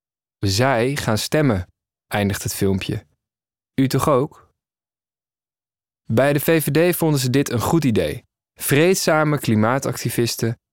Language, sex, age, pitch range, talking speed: Dutch, male, 20-39, 105-130 Hz, 110 wpm